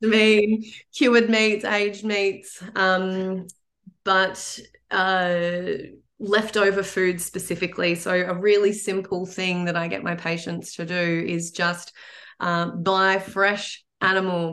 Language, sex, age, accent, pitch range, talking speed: English, female, 20-39, Australian, 170-190 Hz, 120 wpm